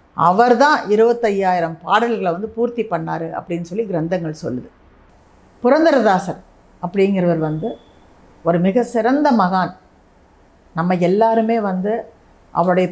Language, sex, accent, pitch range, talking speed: Tamil, female, native, 175-235 Hz, 100 wpm